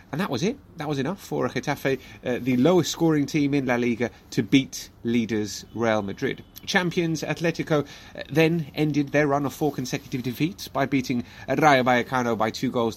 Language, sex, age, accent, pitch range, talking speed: English, male, 30-49, British, 115-145 Hz, 180 wpm